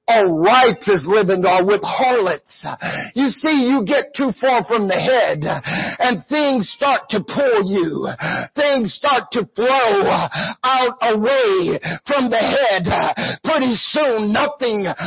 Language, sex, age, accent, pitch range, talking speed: English, male, 60-79, American, 235-310 Hz, 125 wpm